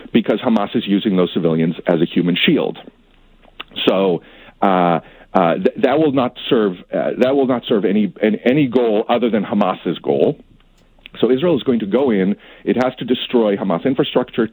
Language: English